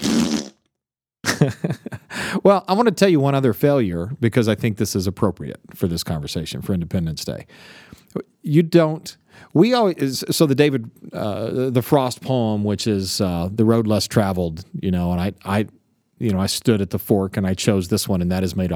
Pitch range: 95-135 Hz